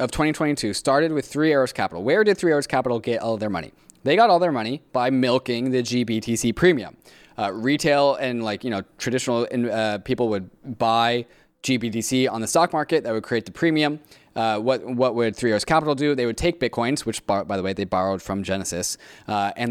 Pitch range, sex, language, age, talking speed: 110-130 Hz, male, English, 20-39, 210 wpm